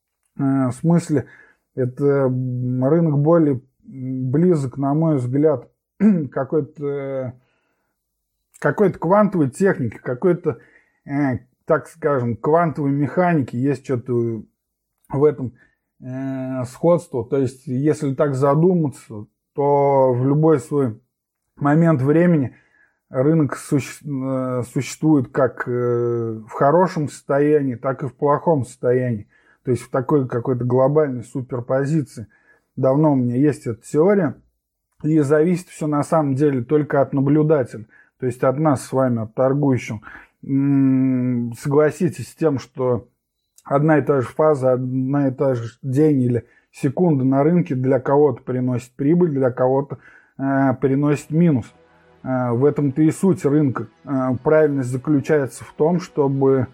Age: 20-39